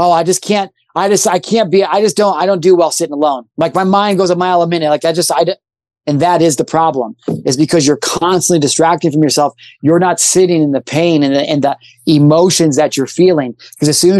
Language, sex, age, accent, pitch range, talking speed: English, male, 30-49, American, 150-180 Hz, 255 wpm